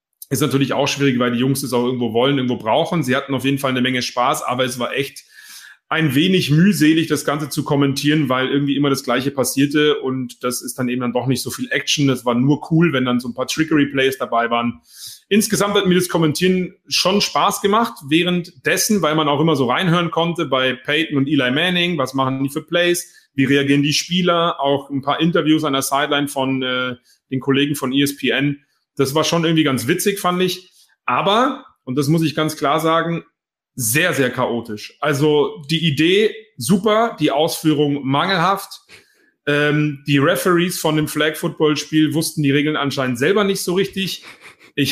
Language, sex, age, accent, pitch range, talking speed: German, male, 30-49, German, 135-175 Hz, 195 wpm